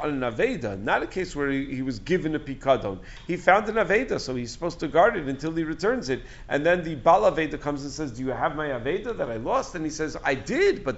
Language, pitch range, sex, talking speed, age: English, 125-160 Hz, male, 255 wpm, 50-69